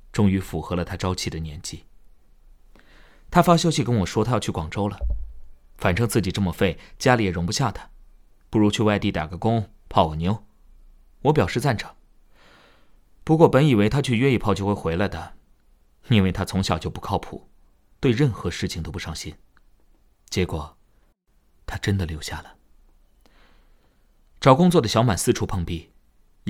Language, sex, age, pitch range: Chinese, male, 30-49, 80-110 Hz